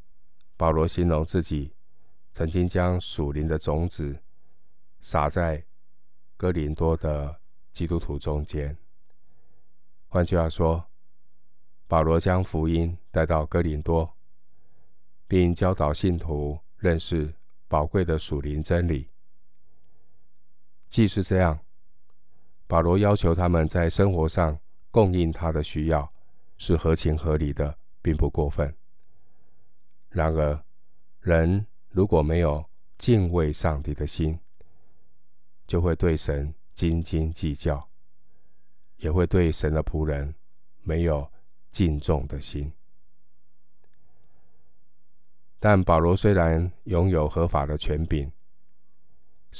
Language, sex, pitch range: Chinese, male, 75-90 Hz